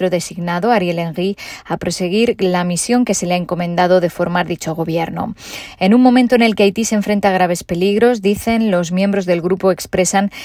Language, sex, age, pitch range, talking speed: Spanish, female, 20-39, 175-210 Hz, 195 wpm